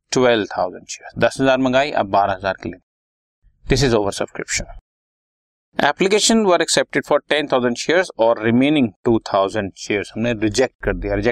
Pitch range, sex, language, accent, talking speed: 95-130 Hz, male, Hindi, native, 85 wpm